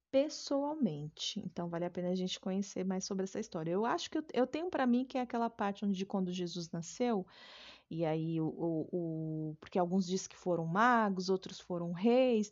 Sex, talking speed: female, 195 wpm